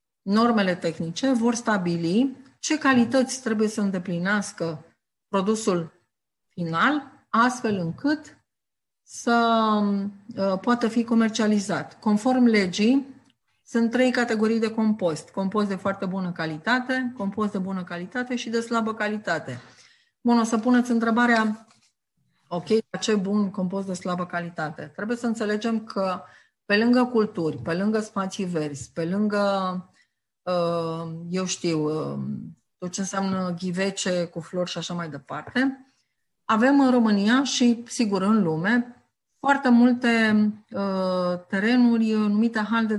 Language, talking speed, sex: Romanian, 120 wpm, female